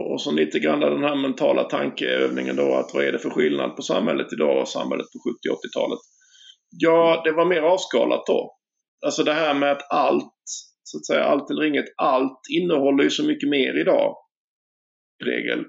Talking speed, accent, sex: 190 wpm, native, male